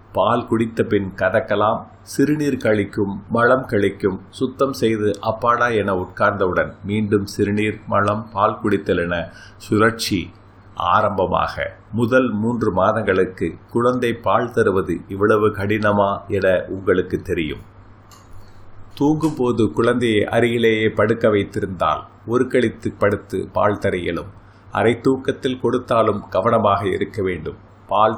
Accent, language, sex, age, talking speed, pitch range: native, Tamil, male, 30-49, 100 wpm, 100-120 Hz